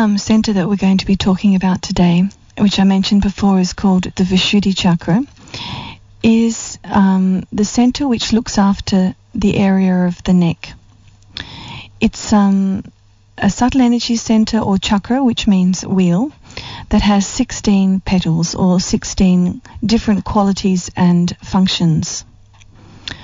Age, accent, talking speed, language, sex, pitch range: 40-59, Australian, 130 wpm, English, female, 170-205 Hz